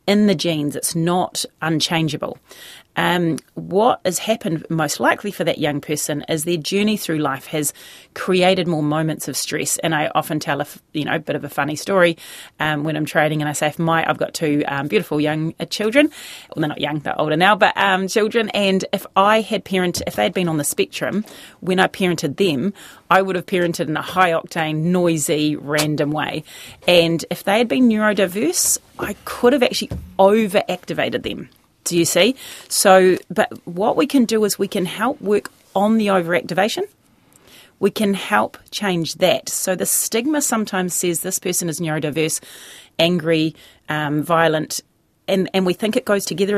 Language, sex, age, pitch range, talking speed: English, female, 30-49, 155-200 Hz, 185 wpm